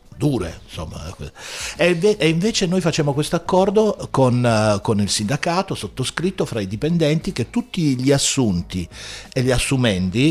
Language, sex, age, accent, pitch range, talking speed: Italian, male, 60-79, native, 100-135 Hz, 135 wpm